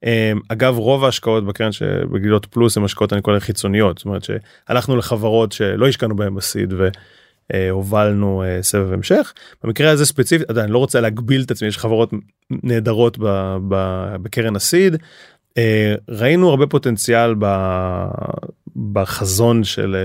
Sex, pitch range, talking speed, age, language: male, 100-125 Hz, 125 wpm, 30-49, Hebrew